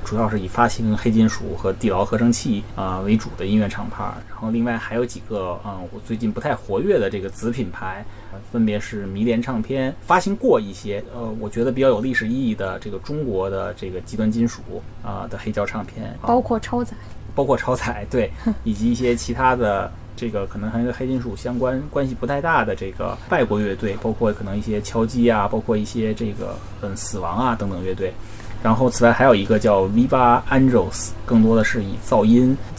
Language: Chinese